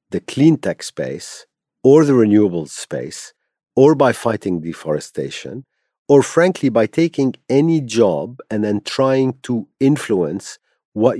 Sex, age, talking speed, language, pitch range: male, 50-69, 130 wpm, English, 85-125 Hz